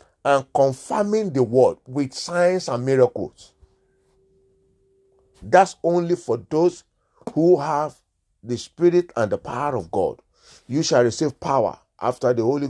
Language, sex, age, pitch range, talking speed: English, male, 50-69, 115-160 Hz, 130 wpm